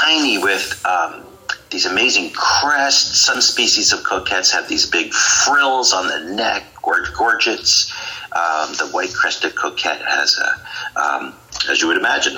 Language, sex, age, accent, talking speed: English, male, 40-59, American, 150 wpm